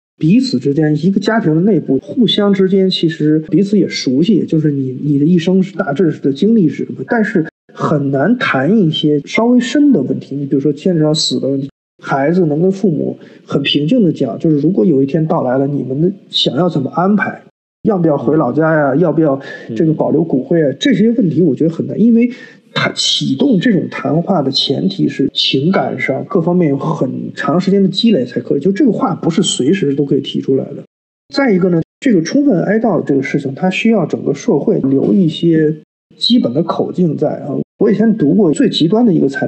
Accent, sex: native, male